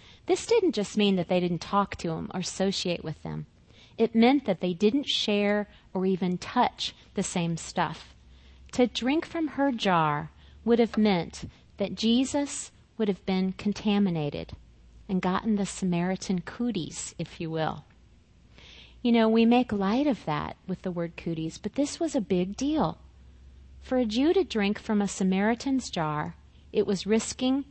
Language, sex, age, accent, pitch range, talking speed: English, female, 40-59, American, 175-255 Hz, 165 wpm